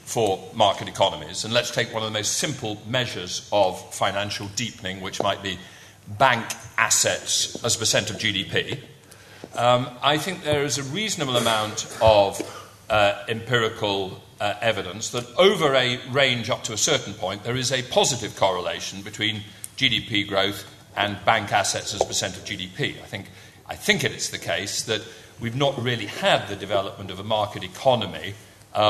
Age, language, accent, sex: 40-59, English, British, male